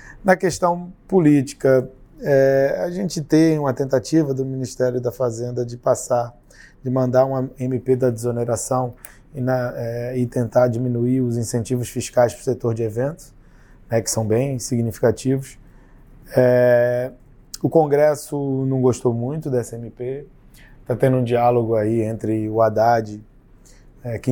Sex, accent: male, Brazilian